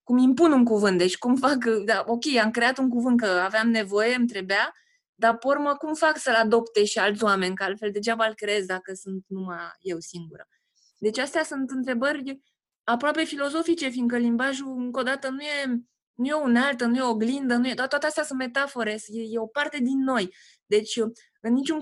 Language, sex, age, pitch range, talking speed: Romanian, female, 20-39, 205-275 Hz, 205 wpm